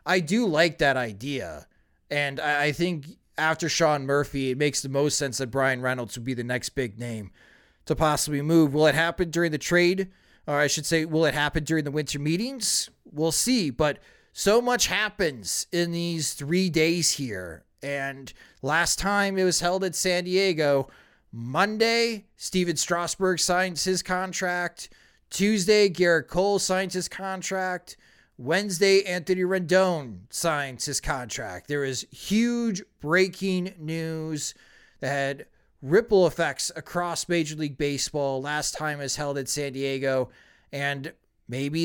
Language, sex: English, male